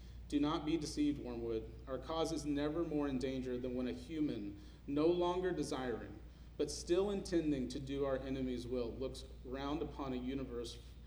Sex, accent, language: male, American, English